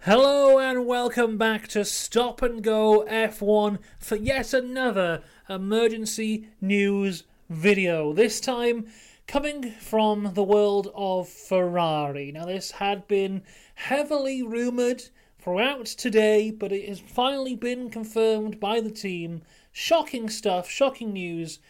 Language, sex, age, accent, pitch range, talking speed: English, male, 30-49, British, 195-260 Hz, 120 wpm